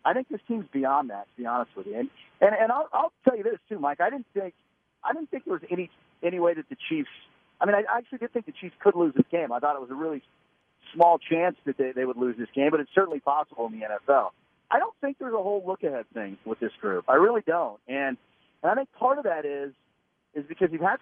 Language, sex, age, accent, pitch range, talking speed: English, male, 40-59, American, 135-180 Hz, 270 wpm